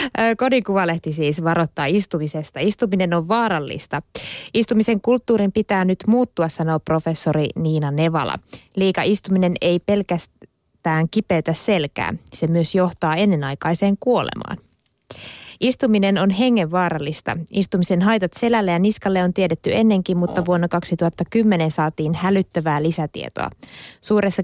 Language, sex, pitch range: Finnish, female, 165-210 Hz